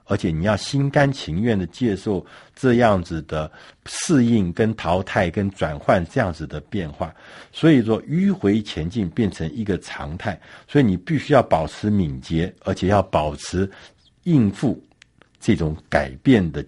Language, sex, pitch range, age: Chinese, male, 90-135 Hz, 60-79